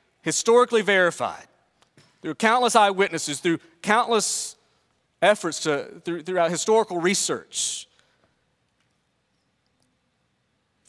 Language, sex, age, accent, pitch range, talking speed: English, male, 40-59, American, 160-205 Hz, 75 wpm